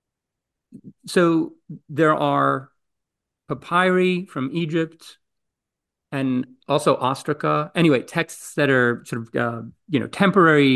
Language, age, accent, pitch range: English, 40-59, American, 130-180 Hz